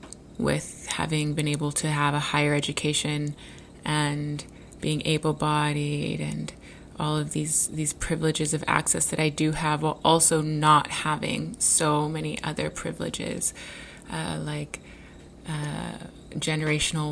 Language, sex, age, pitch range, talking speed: English, female, 20-39, 145-160 Hz, 125 wpm